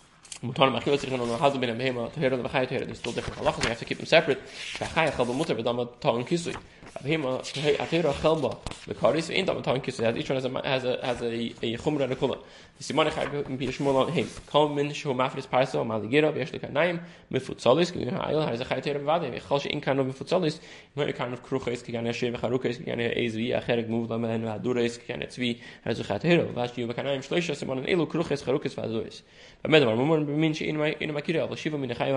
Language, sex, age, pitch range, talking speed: English, male, 20-39, 120-150 Hz, 35 wpm